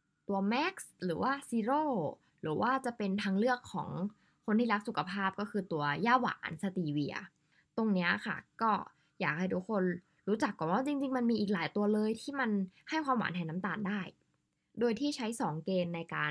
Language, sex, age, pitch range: Thai, female, 20-39, 175-235 Hz